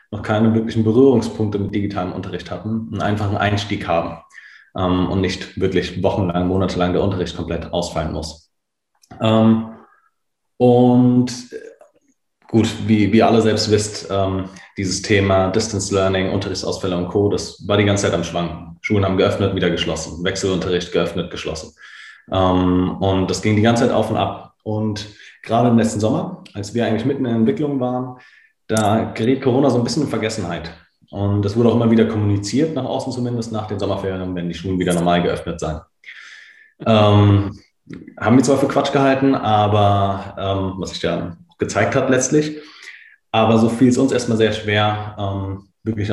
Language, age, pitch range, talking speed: German, 30-49, 95-110 Hz, 170 wpm